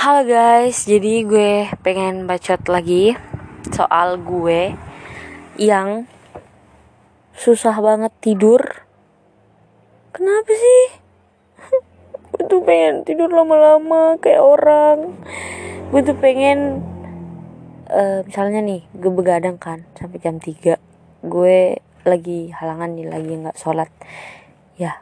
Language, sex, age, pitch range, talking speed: Indonesian, female, 20-39, 180-265 Hz, 95 wpm